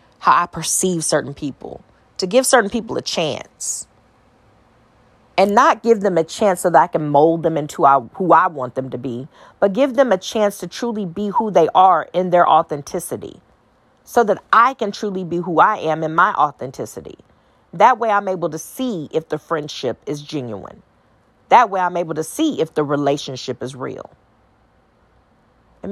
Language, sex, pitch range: English, female, 150-205 Hz